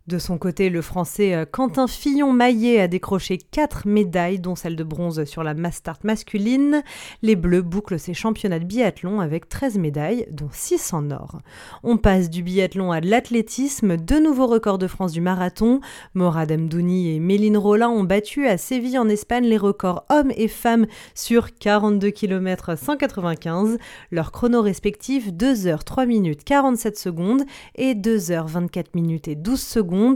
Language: French